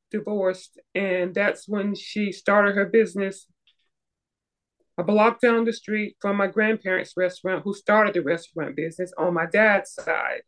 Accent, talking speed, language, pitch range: American, 150 wpm, English, 185-210 Hz